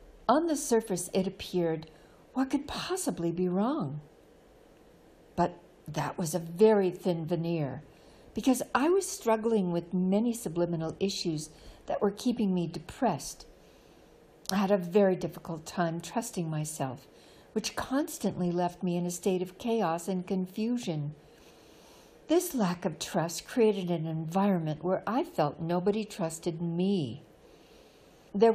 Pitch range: 160-210 Hz